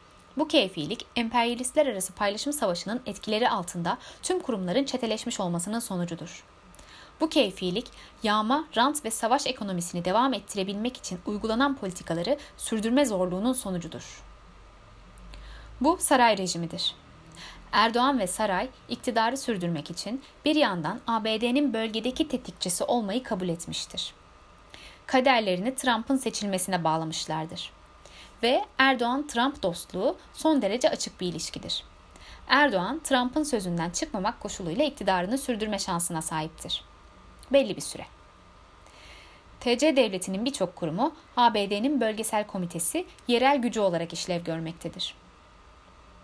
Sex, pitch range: female, 170-260 Hz